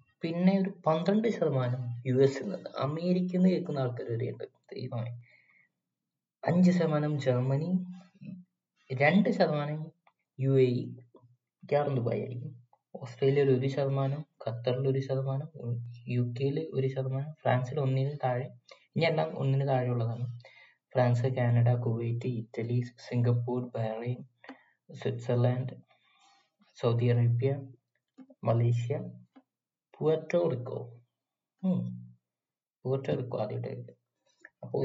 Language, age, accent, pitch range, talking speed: Malayalam, 20-39, native, 120-145 Hz, 75 wpm